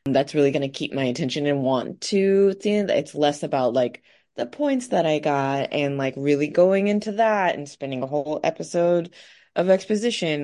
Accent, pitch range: American, 135-175 Hz